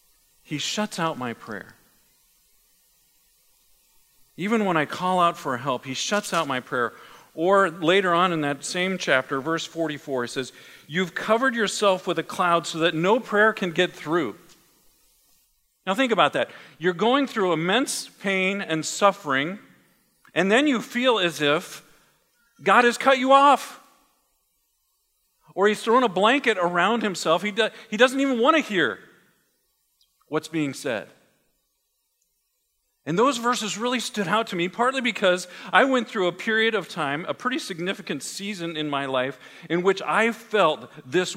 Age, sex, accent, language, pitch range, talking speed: 50-69, male, American, English, 150-215 Hz, 160 wpm